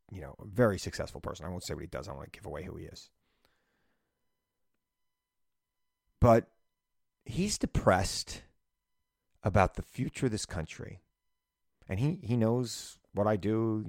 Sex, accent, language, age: male, American, English, 30-49